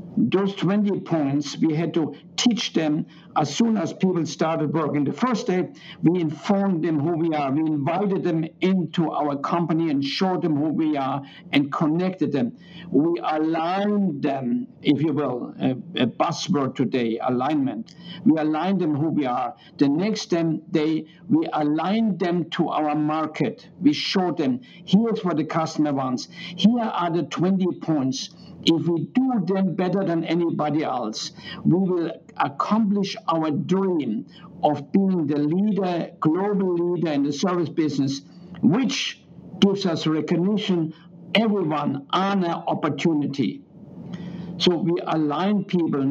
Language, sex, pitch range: English, male, 155-190 Hz